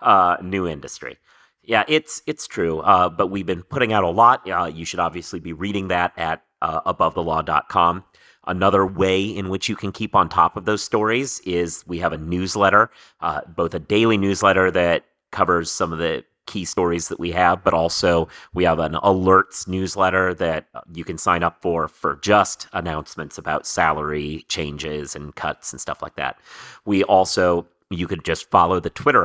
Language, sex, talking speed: English, male, 185 wpm